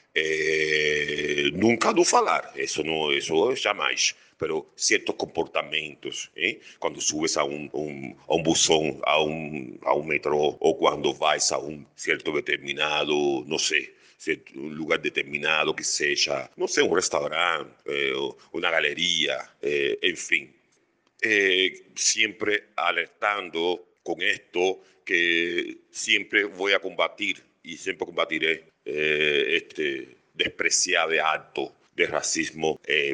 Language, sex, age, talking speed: Portuguese, male, 50-69, 115 wpm